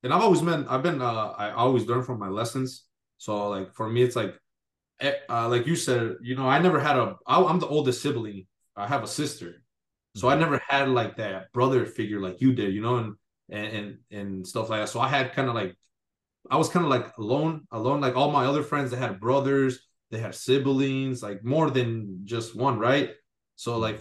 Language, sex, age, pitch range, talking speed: English, male, 20-39, 110-135 Hz, 225 wpm